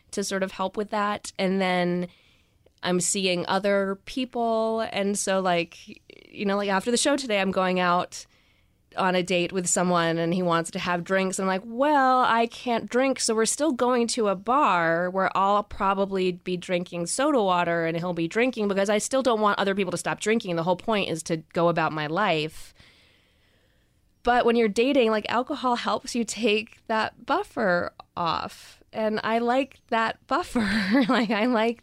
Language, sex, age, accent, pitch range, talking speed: English, female, 20-39, American, 175-225 Hz, 185 wpm